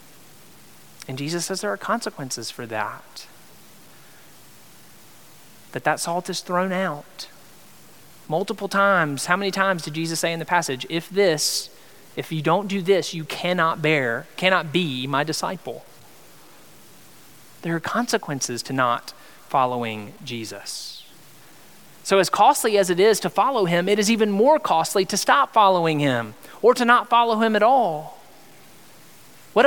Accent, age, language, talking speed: American, 30-49, English, 145 wpm